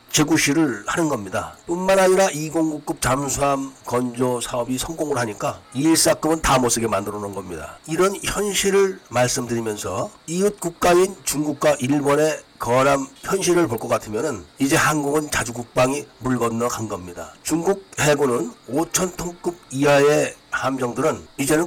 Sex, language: male, Korean